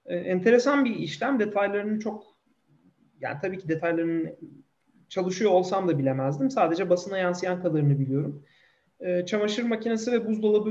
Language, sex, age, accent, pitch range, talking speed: Turkish, male, 40-59, native, 175-245 Hz, 125 wpm